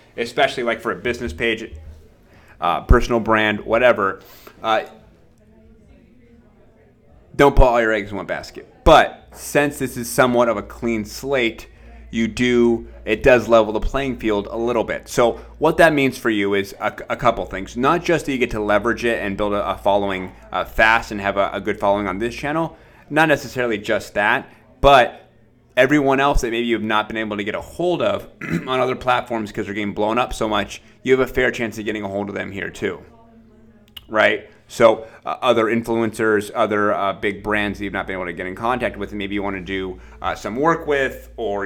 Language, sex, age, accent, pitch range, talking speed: English, male, 30-49, American, 100-120 Hz, 205 wpm